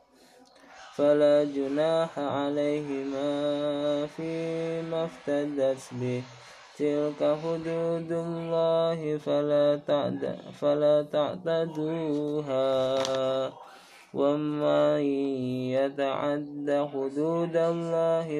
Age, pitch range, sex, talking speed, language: 20-39, 135-150 Hz, male, 50 wpm, Indonesian